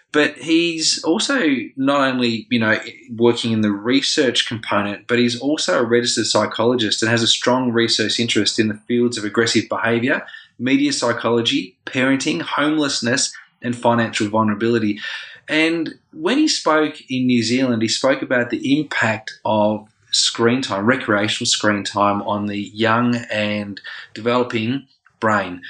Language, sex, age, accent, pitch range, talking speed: English, male, 20-39, Australian, 105-130 Hz, 140 wpm